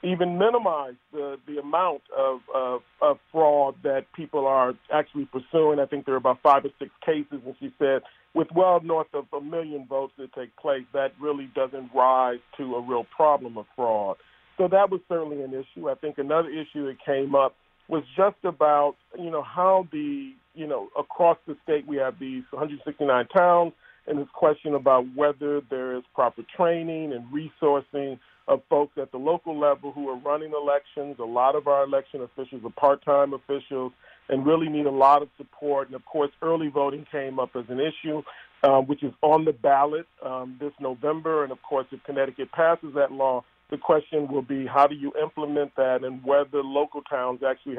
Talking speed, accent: 195 wpm, American